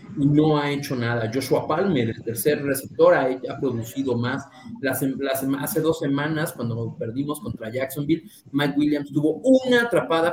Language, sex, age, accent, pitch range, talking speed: Spanish, male, 30-49, Mexican, 125-165 Hz, 165 wpm